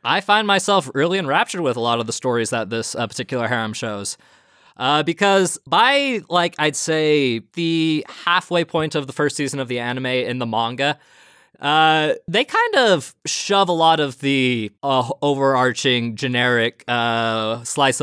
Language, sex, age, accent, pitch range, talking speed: English, male, 20-39, American, 120-160 Hz, 165 wpm